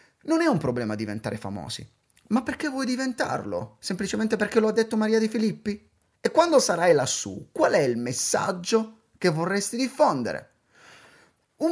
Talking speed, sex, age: 155 wpm, male, 30-49